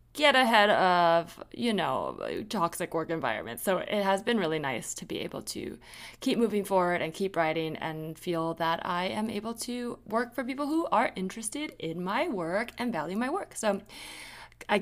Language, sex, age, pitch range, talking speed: English, female, 20-39, 165-220 Hz, 185 wpm